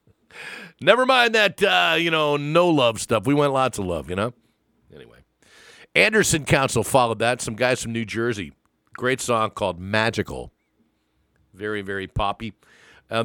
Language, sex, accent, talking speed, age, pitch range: English, male, American, 155 wpm, 50-69, 100-135 Hz